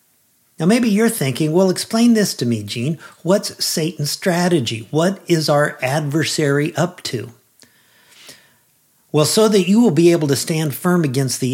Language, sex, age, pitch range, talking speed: English, male, 50-69, 120-165 Hz, 160 wpm